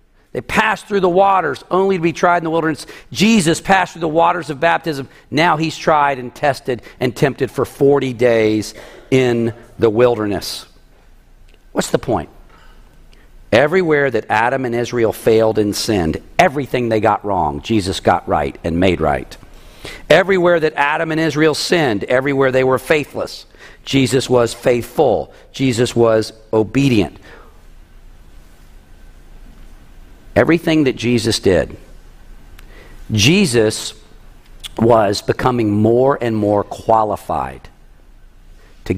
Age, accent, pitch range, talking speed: 50-69, American, 110-160 Hz, 125 wpm